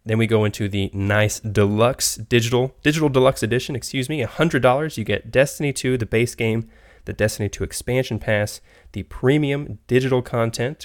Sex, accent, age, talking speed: male, American, 20-39, 165 wpm